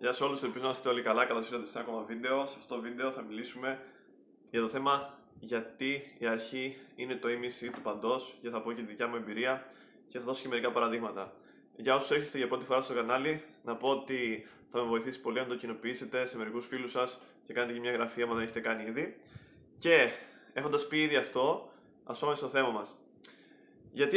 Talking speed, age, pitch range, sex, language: 220 wpm, 20-39, 120-140 Hz, male, Greek